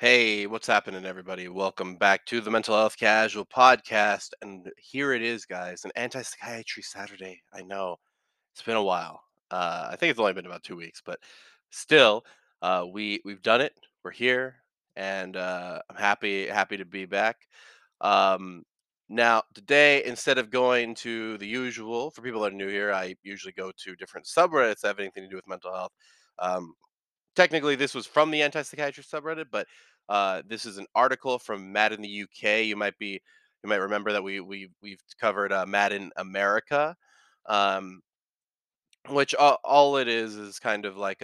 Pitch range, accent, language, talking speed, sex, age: 95-125 Hz, American, English, 180 wpm, male, 20-39